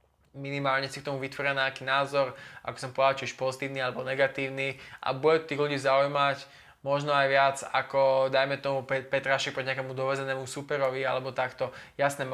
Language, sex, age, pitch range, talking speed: Slovak, male, 20-39, 130-140 Hz, 165 wpm